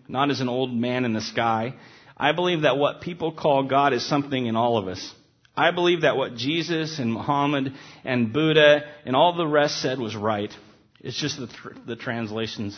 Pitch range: 110-140 Hz